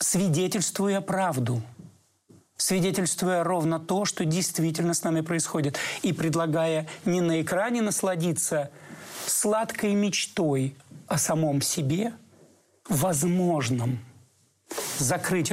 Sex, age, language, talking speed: male, 40-59, Russian, 90 wpm